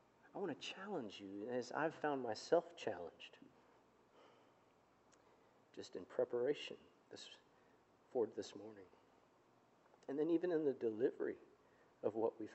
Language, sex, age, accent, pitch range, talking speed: English, male, 40-59, American, 120-160 Hz, 120 wpm